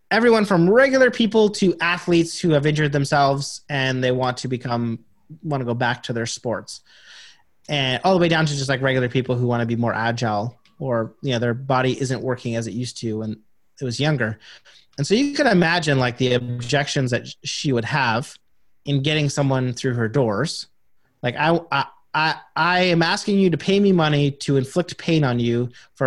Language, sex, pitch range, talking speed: English, male, 125-175 Hz, 205 wpm